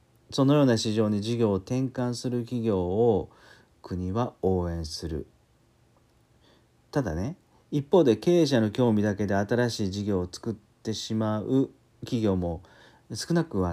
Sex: male